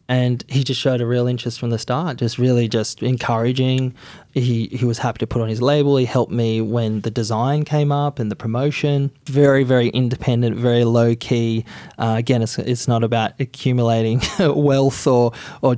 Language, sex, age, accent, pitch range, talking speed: English, male, 20-39, Australian, 115-130 Hz, 190 wpm